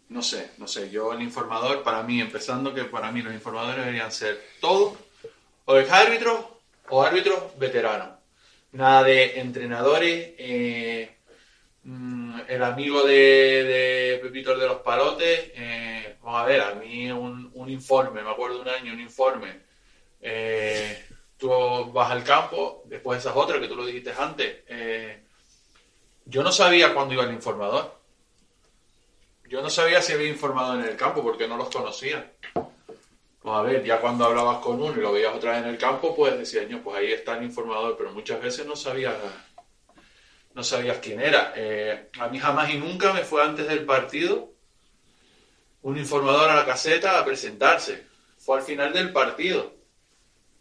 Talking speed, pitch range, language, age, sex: 165 wpm, 120-150 Hz, Spanish, 20-39, male